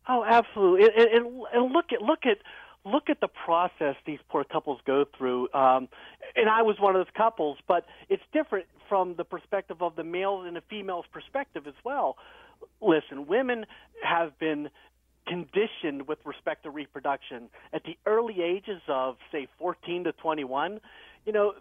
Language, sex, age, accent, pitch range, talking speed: English, male, 40-59, American, 165-230 Hz, 165 wpm